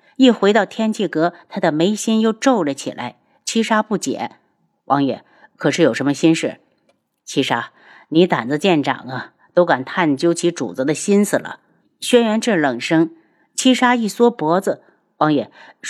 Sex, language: female, Chinese